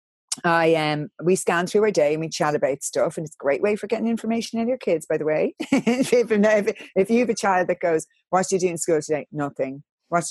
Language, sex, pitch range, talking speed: English, female, 145-200 Hz, 255 wpm